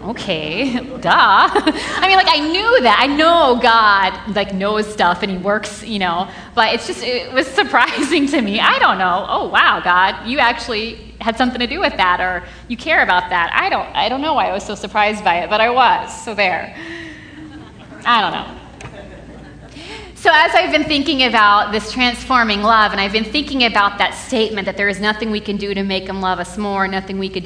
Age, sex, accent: 30-49, female, American